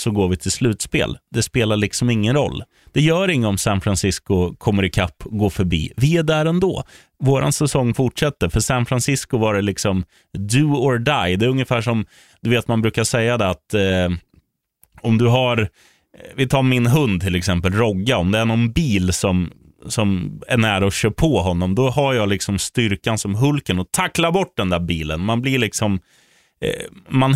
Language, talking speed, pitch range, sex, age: Swedish, 195 wpm, 100-130 Hz, male, 30-49